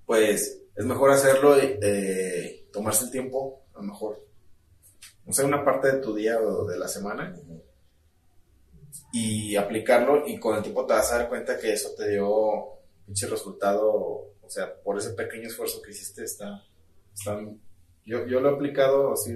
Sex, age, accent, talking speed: male, 30-49, Mexican, 180 wpm